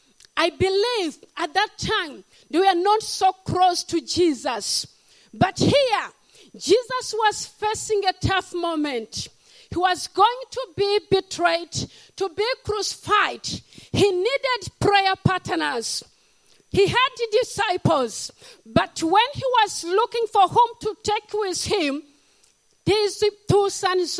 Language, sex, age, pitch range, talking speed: English, female, 50-69, 330-400 Hz, 125 wpm